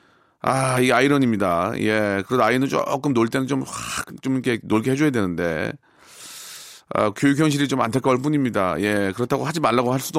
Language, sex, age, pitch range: Korean, male, 40-59, 105-145 Hz